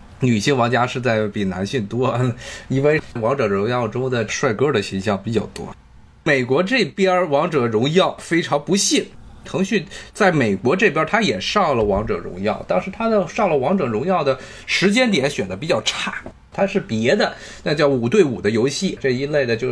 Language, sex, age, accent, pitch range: Chinese, male, 20-39, native, 130-205 Hz